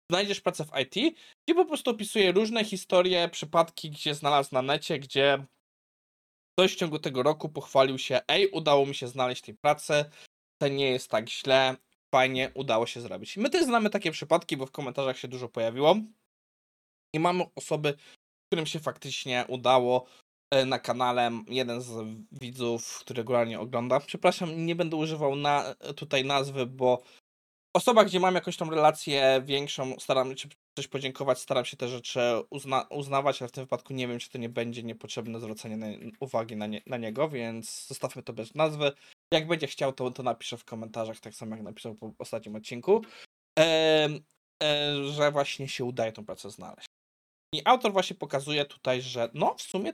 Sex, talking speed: male, 180 wpm